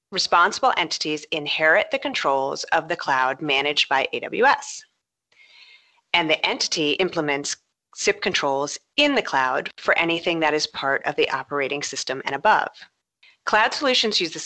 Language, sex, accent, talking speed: English, female, American, 145 wpm